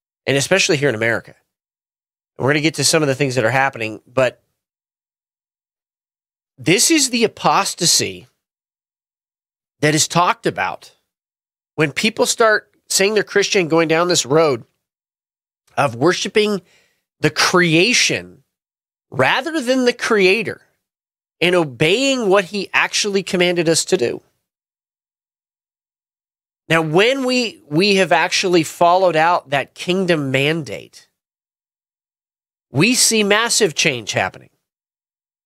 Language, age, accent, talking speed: English, 30-49, American, 115 wpm